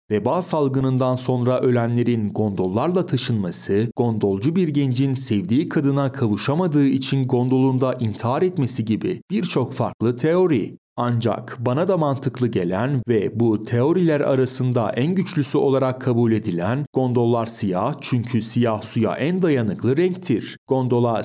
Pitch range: 115-145 Hz